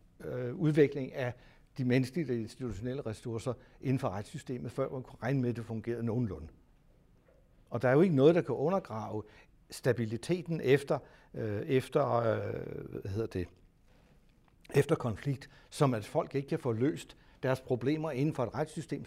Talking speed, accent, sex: 155 wpm, native, male